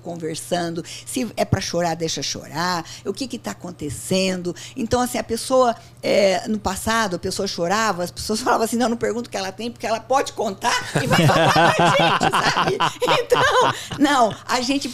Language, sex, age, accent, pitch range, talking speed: Portuguese, female, 50-69, Brazilian, 180-260 Hz, 190 wpm